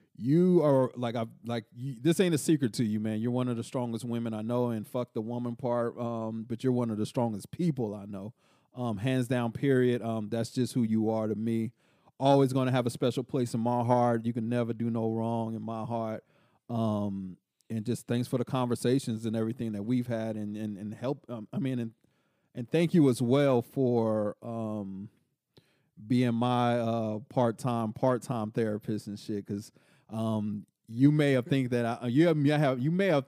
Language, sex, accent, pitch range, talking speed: English, male, American, 110-125 Hz, 210 wpm